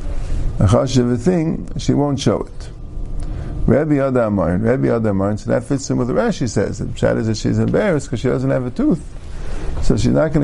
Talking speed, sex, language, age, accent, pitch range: 220 wpm, male, English, 50-69, American, 100-140 Hz